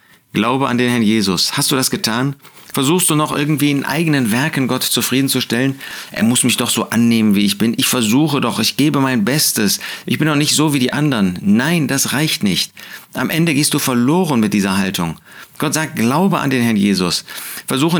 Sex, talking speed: male, 205 wpm